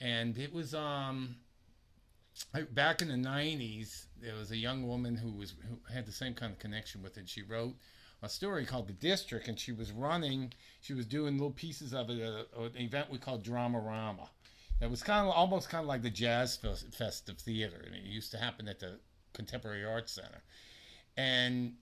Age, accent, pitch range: 50-69, American, 105-135 Hz